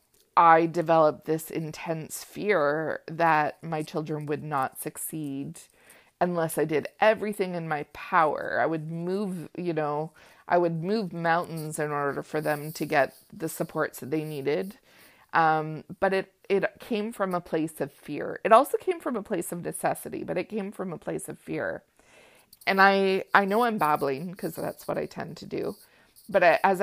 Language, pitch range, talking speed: English, 155-190 Hz, 180 wpm